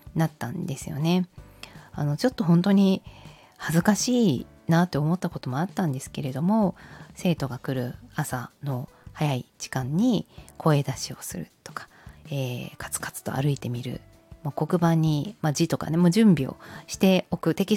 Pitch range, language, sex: 145-205 Hz, Japanese, female